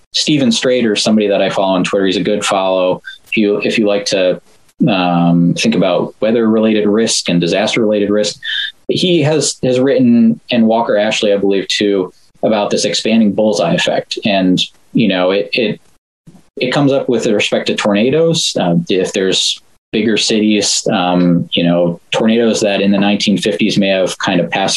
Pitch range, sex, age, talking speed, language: 90-115 Hz, male, 20-39, 175 wpm, English